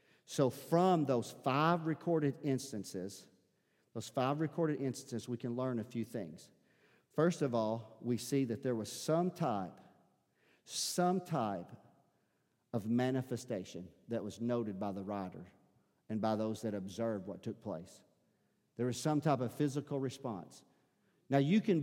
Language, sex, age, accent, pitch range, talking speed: English, male, 50-69, American, 110-145 Hz, 150 wpm